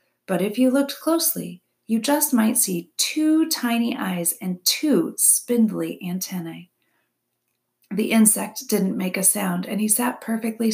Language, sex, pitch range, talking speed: English, female, 180-230 Hz, 145 wpm